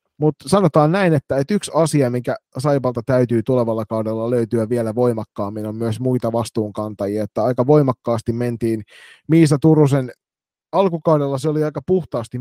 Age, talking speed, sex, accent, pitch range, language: 30-49, 145 wpm, male, native, 110-130 Hz, Finnish